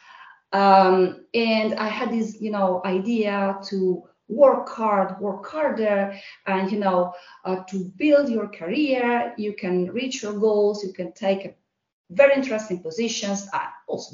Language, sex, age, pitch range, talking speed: English, female, 30-49, 185-225 Hz, 145 wpm